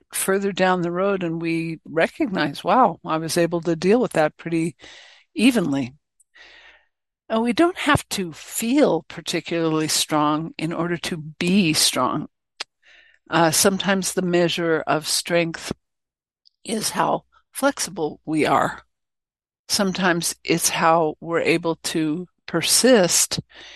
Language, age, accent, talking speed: English, 60-79, American, 120 wpm